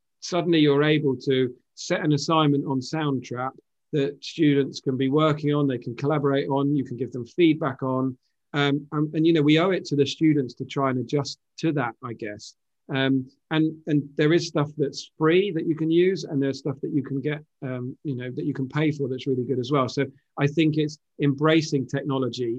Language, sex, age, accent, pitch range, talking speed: English, male, 40-59, British, 135-155 Hz, 220 wpm